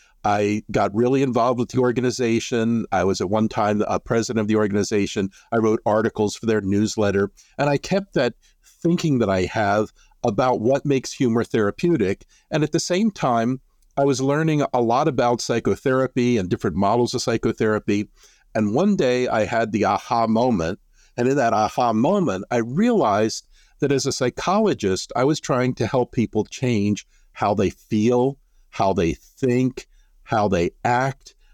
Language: English